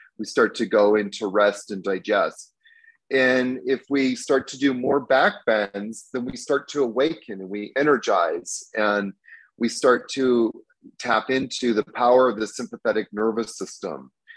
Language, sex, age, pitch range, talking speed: English, male, 30-49, 105-130 Hz, 160 wpm